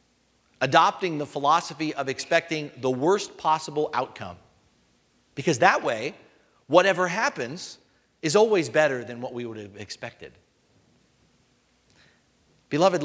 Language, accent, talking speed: English, American, 110 wpm